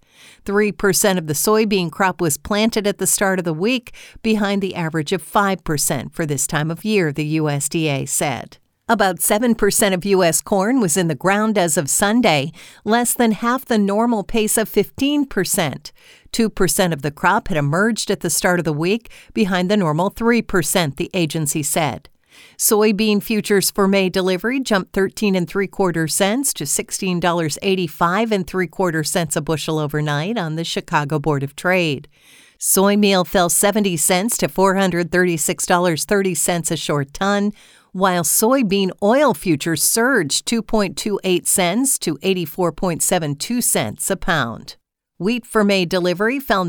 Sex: female